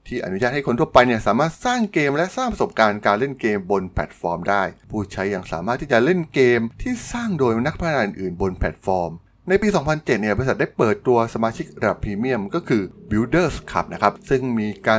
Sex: male